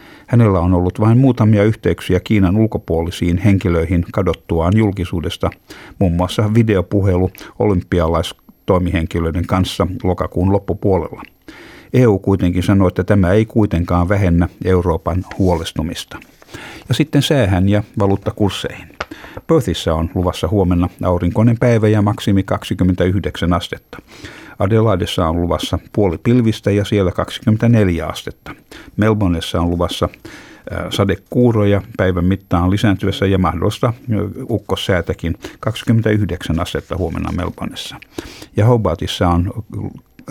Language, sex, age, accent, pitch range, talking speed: Finnish, male, 50-69, native, 90-110 Hz, 105 wpm